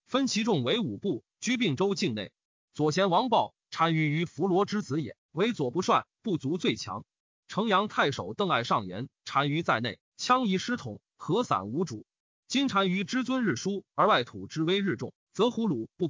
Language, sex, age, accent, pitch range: Chinese, male, 30-49, native, 150-215 Hz